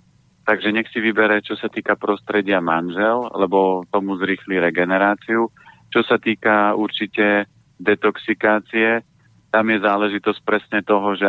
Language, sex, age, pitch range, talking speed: Slovak, male, 40-59, 95-105 Hz, 130 wpm